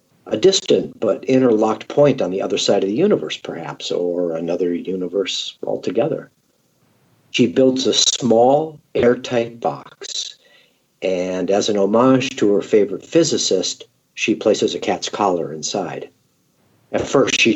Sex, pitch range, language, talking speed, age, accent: male, 110-150 Hz, English, 135 wpm, 50-69, American